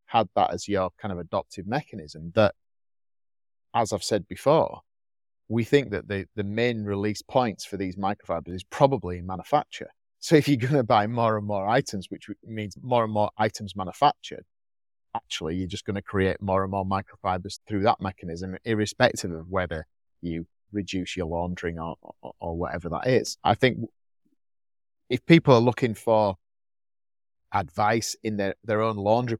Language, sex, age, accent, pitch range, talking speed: English, male, 30-49, British, 95-110 Hz, 170 wpm